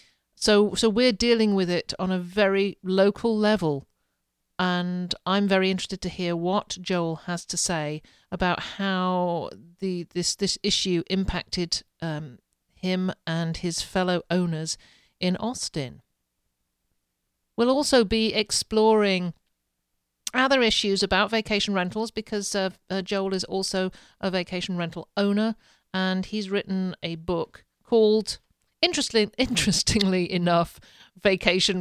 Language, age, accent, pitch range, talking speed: English, 50-69, British, 165-205 Hz, 125 wpm